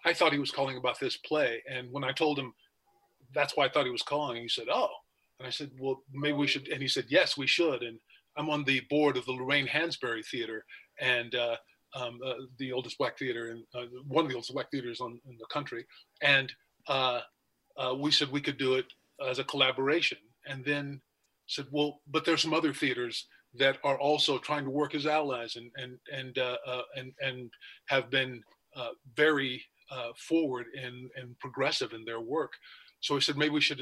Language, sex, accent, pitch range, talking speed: English, male, American, 125-145 Hz, 210 wpm